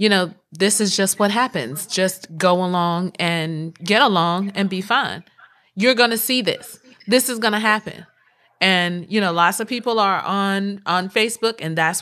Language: English